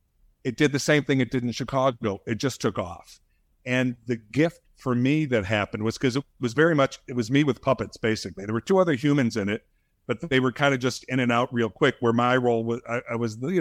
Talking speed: 255 wpm